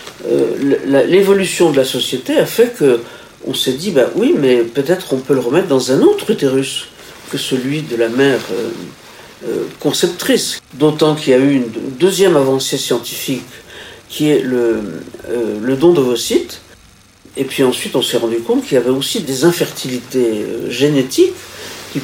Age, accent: 50-69, French